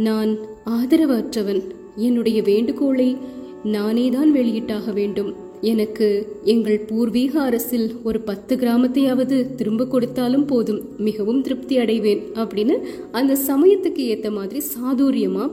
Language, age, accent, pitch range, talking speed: Tamil, 30-49, native, 215-295 Hz, 95 wpm